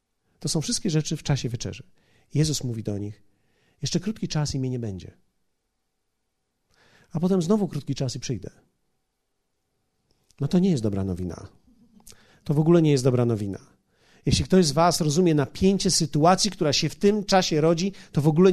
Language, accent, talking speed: Polish, native, 175 wpm